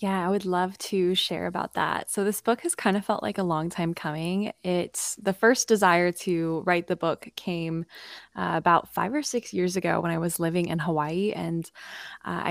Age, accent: 20-39, American